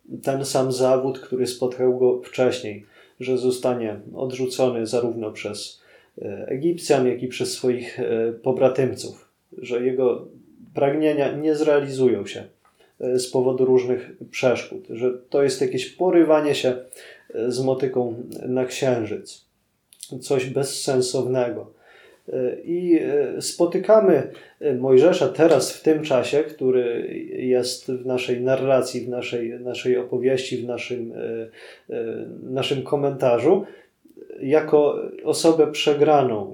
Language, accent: Polish, native